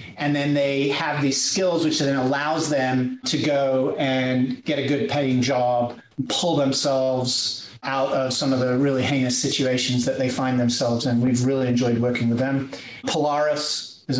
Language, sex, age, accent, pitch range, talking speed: English, male, 40-59, American, 130-150 Hz, 180 wpm